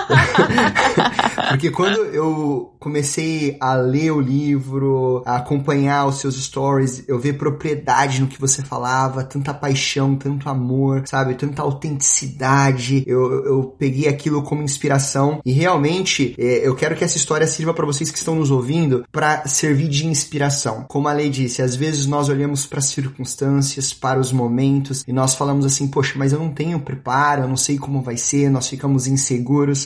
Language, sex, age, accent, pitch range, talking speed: Portuguese, male, 20-39, Brazilian, 135-160 Hz, 170 wpm